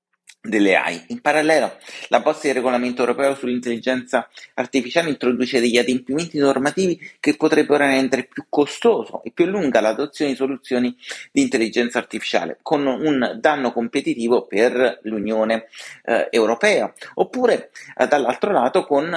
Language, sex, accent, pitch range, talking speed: Italian, male, native, 125-150 Hz, 130 wpm